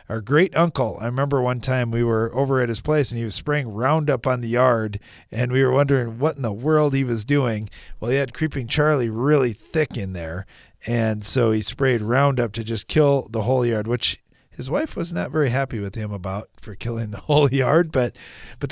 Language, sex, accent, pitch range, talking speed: English, male, American, 110-140 Hz, 220 wpm